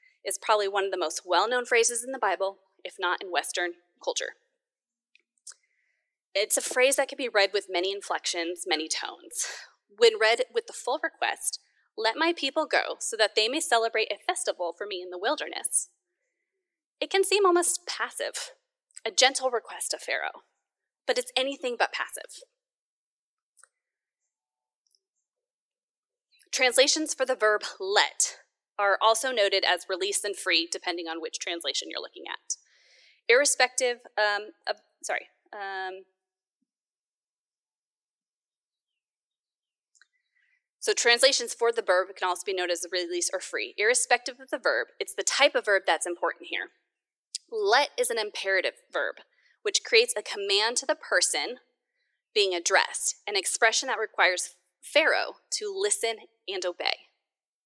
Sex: female